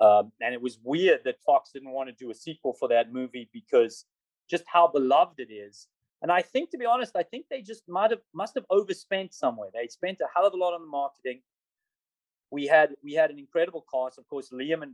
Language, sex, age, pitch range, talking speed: English, male, 30-49, 130-215 Hz, 235 wpm